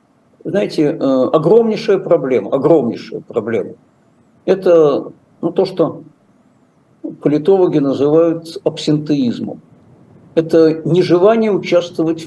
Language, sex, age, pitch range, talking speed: Russian, male, 50-69, 155-190 Hz, 75 wpm